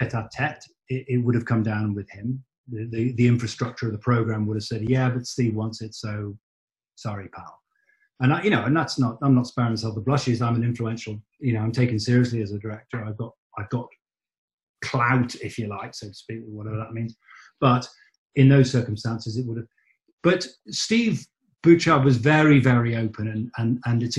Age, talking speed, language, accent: 40-59, 205 wpm, English, British